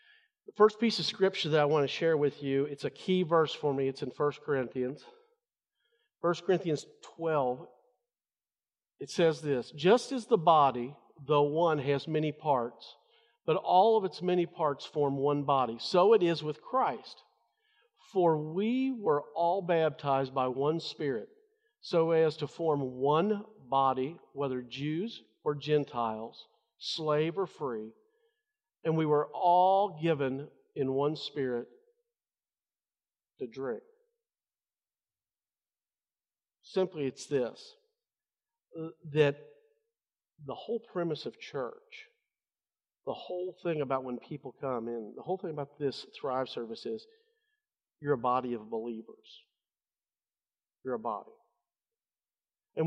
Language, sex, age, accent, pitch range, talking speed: English, male, 50-69, American, 145-230 Hz, 130 wpm